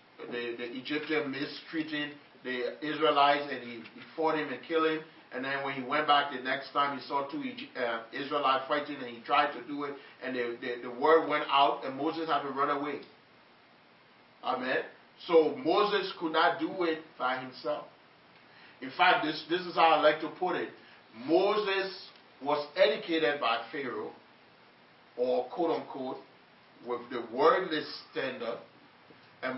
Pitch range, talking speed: 130-165 Hz, 165 wpm